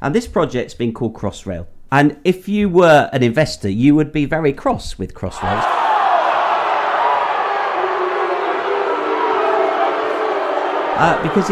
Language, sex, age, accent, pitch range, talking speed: English, male, 50-69, British, 105-175 Hz, 105 wpm